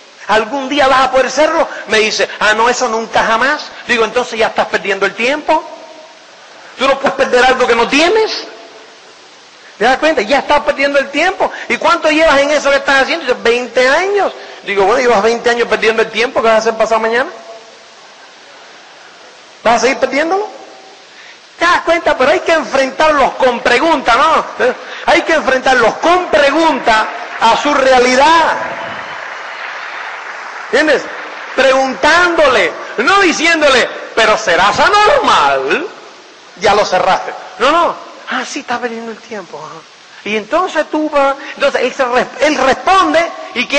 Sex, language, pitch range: male, Spanish, 235-305 Hz